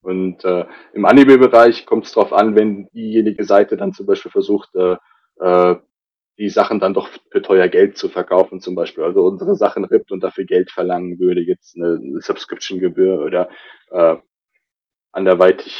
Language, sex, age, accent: German, male, 20-39, German